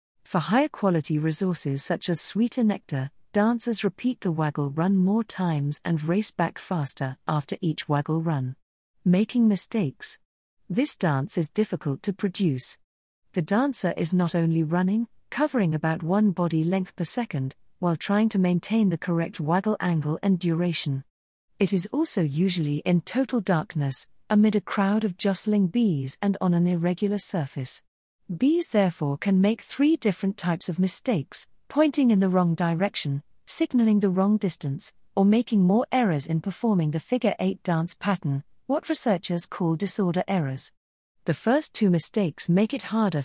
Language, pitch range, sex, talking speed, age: English, 160-210 Hz, female, 155 wpm, 40-59